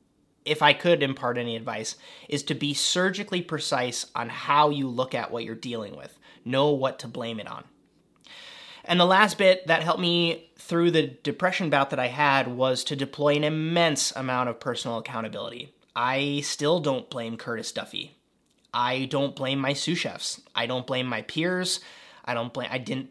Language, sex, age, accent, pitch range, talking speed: English, male, 30-49, American, 130-155 Hz, 180 wpm